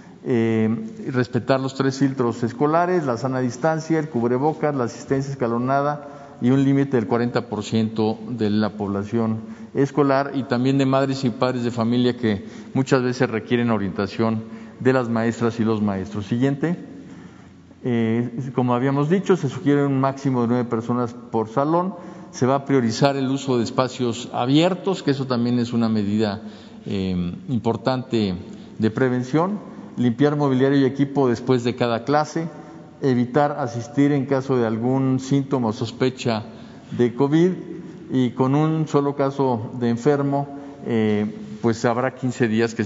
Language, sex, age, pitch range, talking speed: Spanish, male, 50-69, 115-140 Hz, 150 wpm